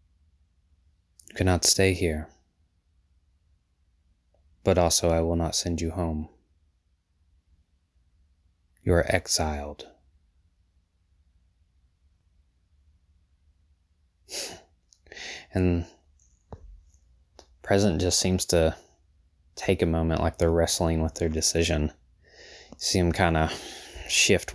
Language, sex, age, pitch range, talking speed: English, male, 20-39, 75-85 Hz, 80 wpm